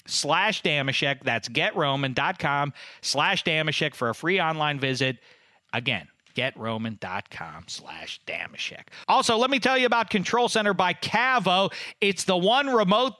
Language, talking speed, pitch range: English, 130 wpm, 130-215 Hz